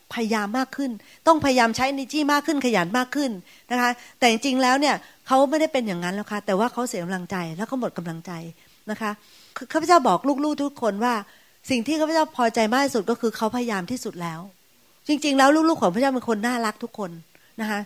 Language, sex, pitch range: Thai, female, 205-265 Hz